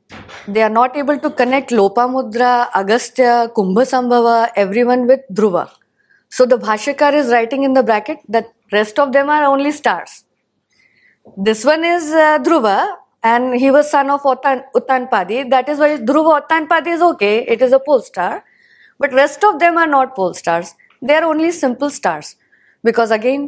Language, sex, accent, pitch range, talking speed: English, female, Indian, 200-275 Hz, 170 wpm